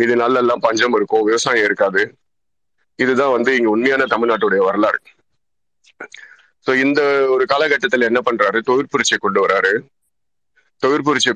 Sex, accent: male, native